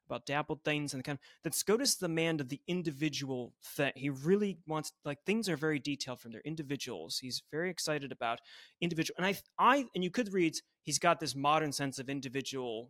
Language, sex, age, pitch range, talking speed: English, male, 30-49, 140-175 Hz, 215 wpm